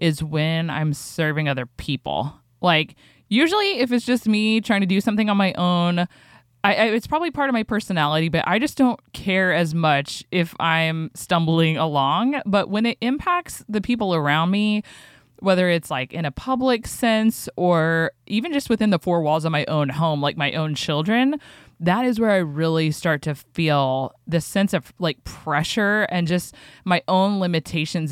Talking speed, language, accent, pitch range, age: 180 wpm, English, American, 155-205 Hz, 20-39